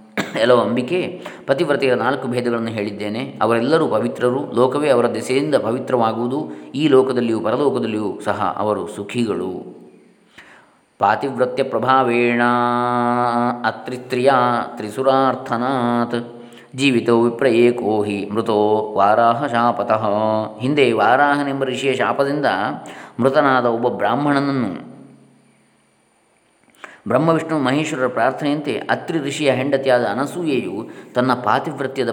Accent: native